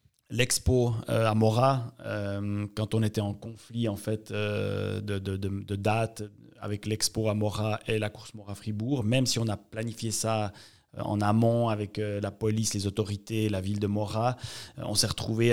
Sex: male